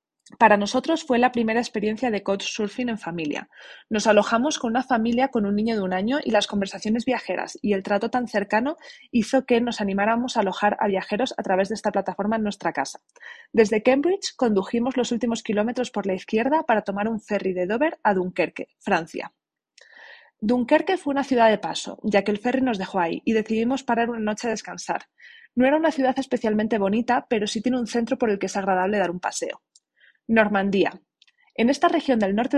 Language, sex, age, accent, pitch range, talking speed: Spanish, female, 20-39, Spanish, 205-260 Hz, 205 wpm